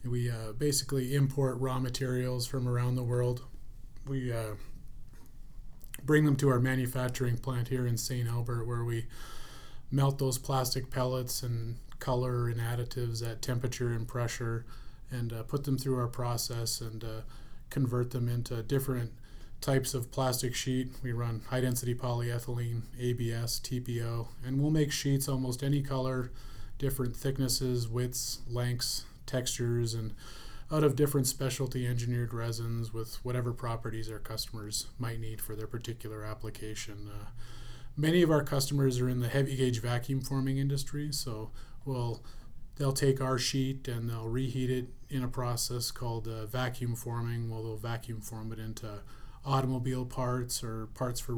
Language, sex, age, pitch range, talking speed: English, male, 30-49, 115-130 Hz, 150 wpm